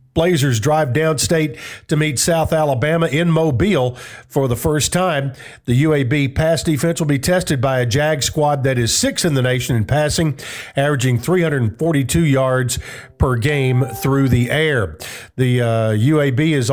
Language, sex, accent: English, male, American